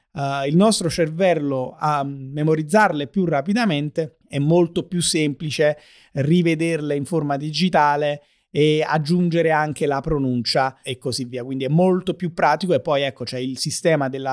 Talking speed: 155 wpm